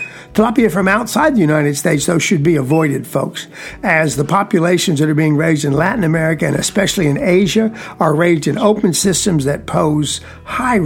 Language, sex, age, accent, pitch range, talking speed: English, male, 60-79, American, 155-200 Hz, 180 wpm